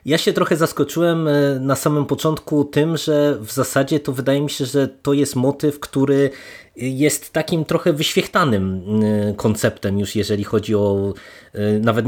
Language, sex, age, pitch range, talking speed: Polish, male, 20-39, 110-145 Hz, 150 wpm